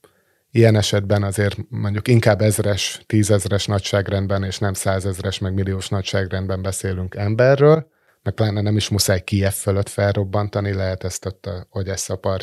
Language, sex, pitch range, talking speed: Hungarian, male, 95-110 Hz, 135 wpm